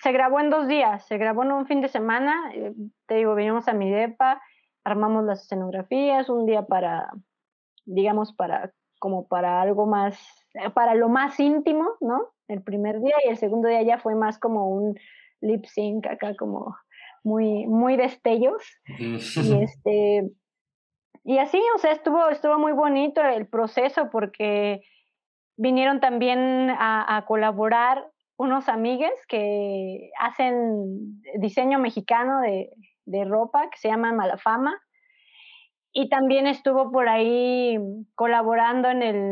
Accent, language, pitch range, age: Mexican, Spanish, 215-275 Hz, 20-39